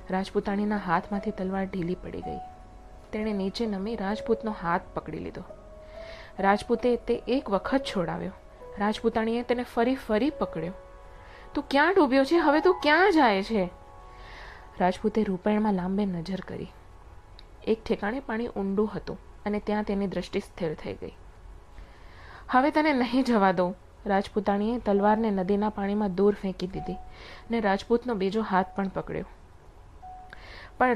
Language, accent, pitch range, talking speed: Gujarati, native, 190-235 Hz, 80 wpm